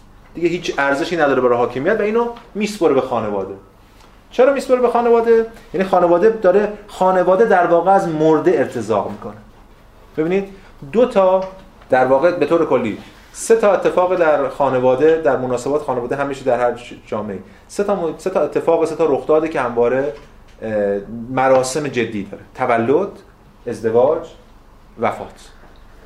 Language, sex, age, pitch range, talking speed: Persian, male, 30-49, 120-185 Hz, 145 wpm